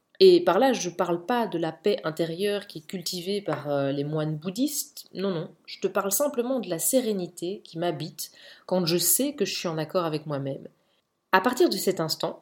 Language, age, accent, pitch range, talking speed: French, 20-39, French, 165-245 Hz, 215 wpm